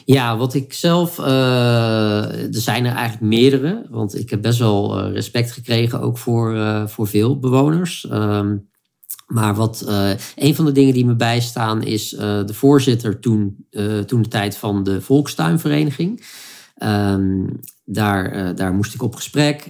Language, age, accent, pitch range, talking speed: Dutch, 40-59, Dutch, 105-140 Hz, 165 wpm